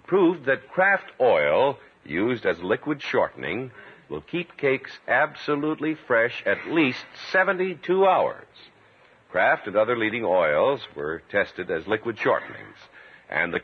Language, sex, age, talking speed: English, male, 60-79, 130 wpm